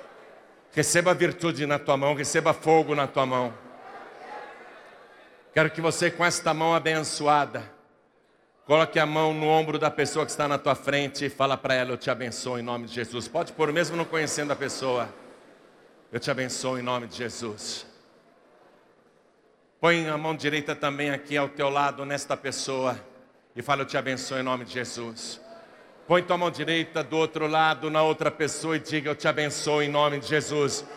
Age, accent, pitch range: 60-79, Brazilian, 140-190 Hz